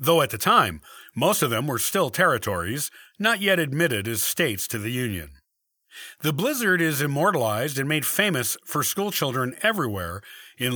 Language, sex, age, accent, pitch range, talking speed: English, male, 50-69, American, 125-180 Hz, 160 wpm